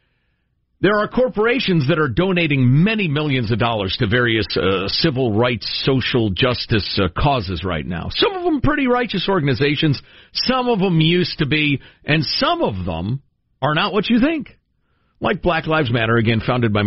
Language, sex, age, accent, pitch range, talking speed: English, male, 50-69, American, 115-175 Hz, 175 wpm